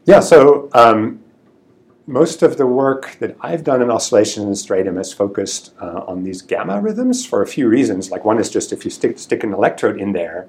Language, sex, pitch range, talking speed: English, male, 95-120 Hz, 210 wpm